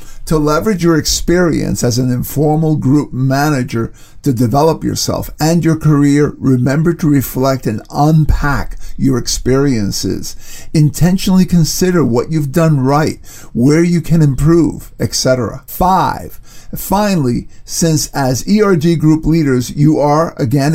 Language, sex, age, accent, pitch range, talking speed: English, male, 50-69, American, 125-160 Hz, 125 wpm